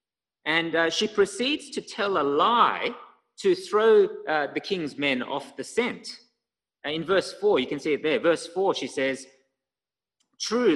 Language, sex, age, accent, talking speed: English, male, 30-49, Australian, 175 wpm